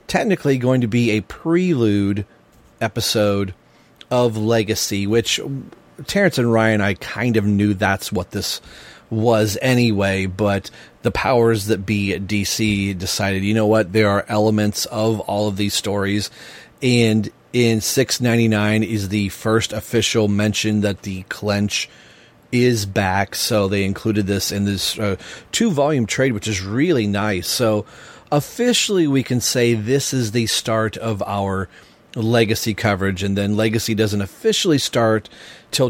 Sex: male